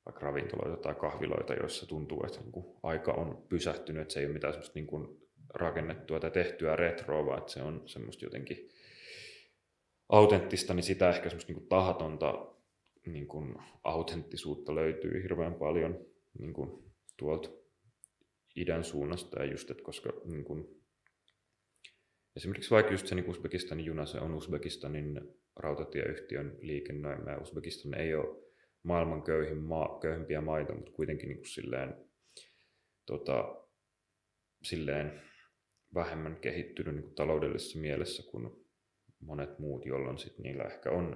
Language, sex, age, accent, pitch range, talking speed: Finnish, male, 30-49, native, 75-95 Hz, 135 wpm